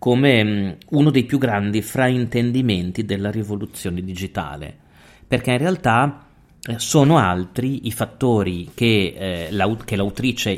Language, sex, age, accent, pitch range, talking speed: Italian, male, 30-49, native, 105-140 Hz, 110 wpm